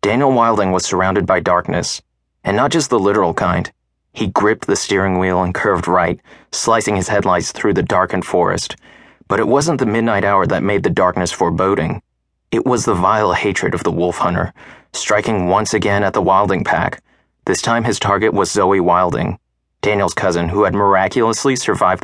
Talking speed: 180 wpm